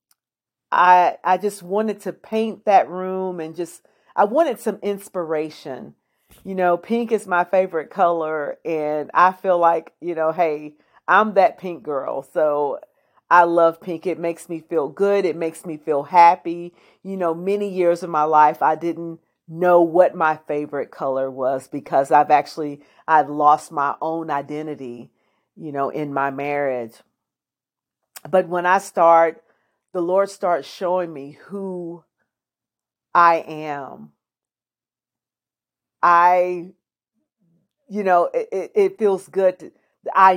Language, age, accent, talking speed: English, 40-59, American, 140 wpm